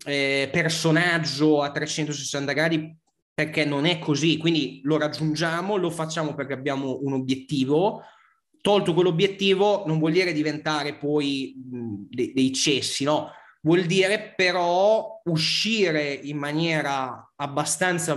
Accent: native